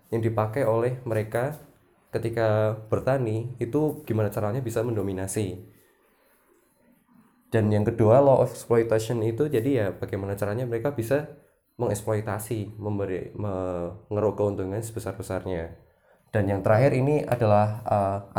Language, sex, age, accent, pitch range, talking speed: Indonesian, male, 20-39, native, 105-125 Hz, 115 wpm